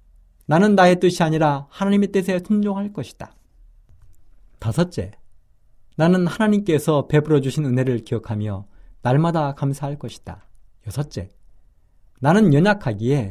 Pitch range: 105-175 Hz